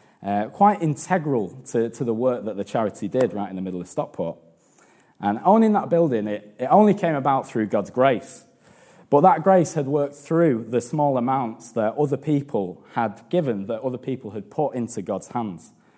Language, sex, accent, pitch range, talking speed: English, male, British, 110-150 Hz, 190 wpm